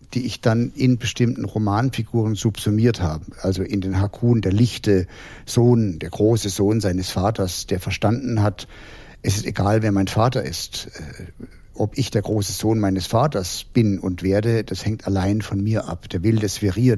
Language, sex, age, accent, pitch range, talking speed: German, male, 60-79, German, 100-120 Hz, 175 wpm